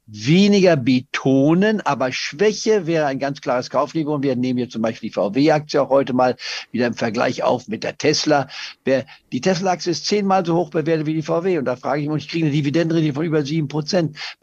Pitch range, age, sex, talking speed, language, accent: 130-170 Hz, 50-69, male, 205 wpm, German, German